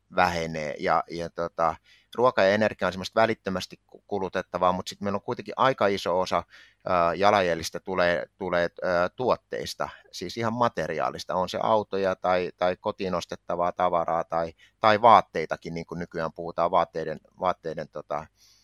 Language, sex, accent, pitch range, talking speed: Finnish, male, native, 85-105 Hz, 140 wpm